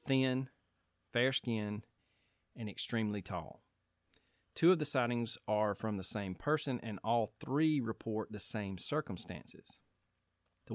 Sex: male